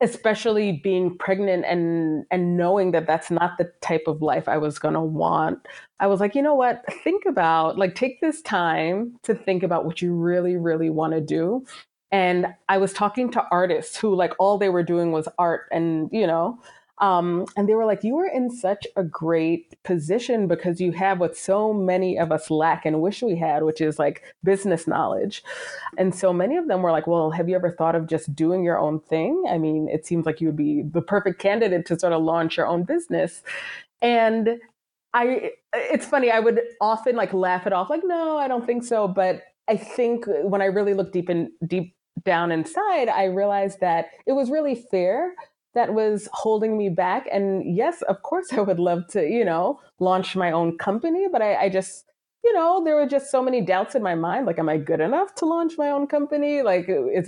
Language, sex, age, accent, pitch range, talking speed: English, female, 20-39, American, 165-225 Hz, 215 wpm